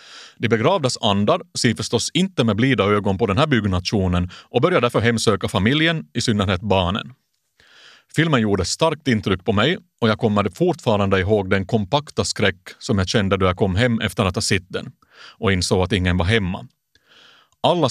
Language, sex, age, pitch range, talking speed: Swedish, male, 30-49, 100-125 Hz, 180 wpm